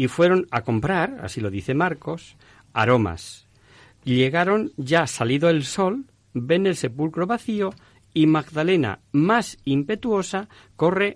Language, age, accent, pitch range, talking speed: Spanish, 50-69, Spanish, 110-170 Hz, 125 wpm